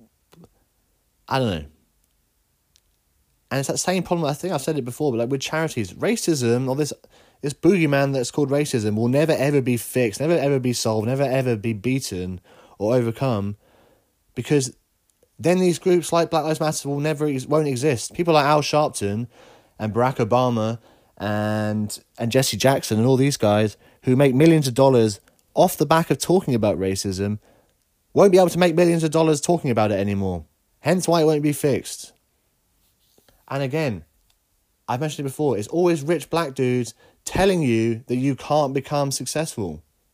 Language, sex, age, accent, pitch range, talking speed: English, male, 30-49, British, 110-155 Hz, 175 wpm